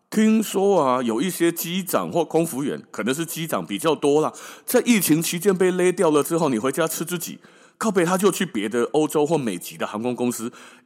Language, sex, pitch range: Chinese, male, 140-205 Hz